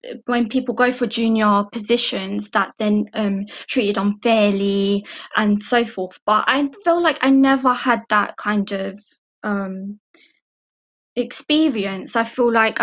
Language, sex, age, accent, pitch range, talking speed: English, female, 20-39, British, 200-240 Hz, 135 wpm